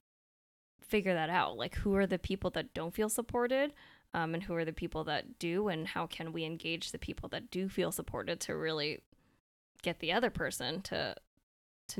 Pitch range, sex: 160-195 Hz, female